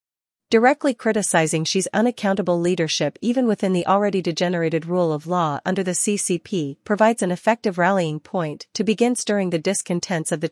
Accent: American